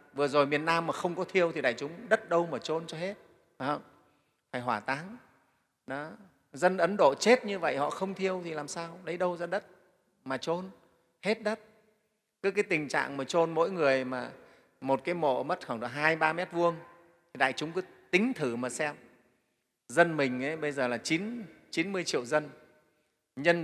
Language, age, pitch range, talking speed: Vietnamese, 30-49, 145-185 Hz, 205 wpm